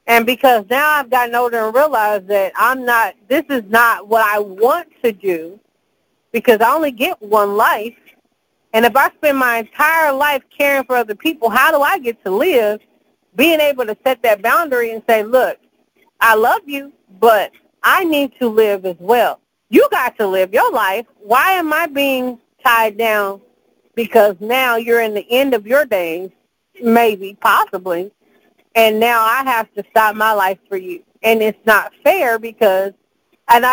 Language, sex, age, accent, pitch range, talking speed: English, female, 40-59, American, 215-260 Hz, 180 wpm